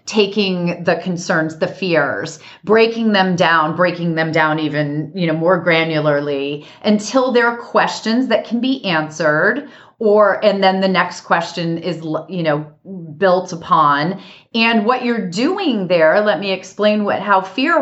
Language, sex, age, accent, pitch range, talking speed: English, female, 30-49, American, 165-210 Hz, 155 wpm